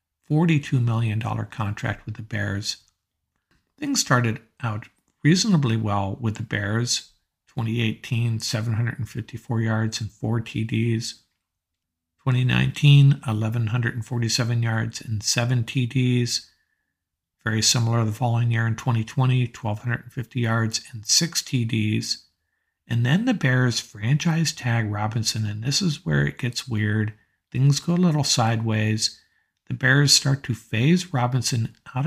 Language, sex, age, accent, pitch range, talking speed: English, male, 50-69, American, 110-135 Hz, 120 wpm